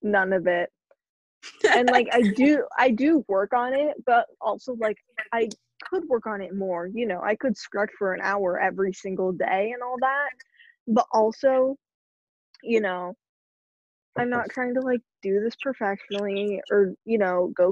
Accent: American